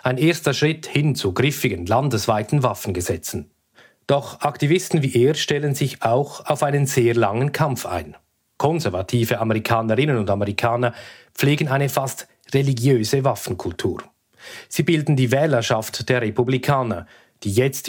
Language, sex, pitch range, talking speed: German, male, 110-140 Hz, 125 wpm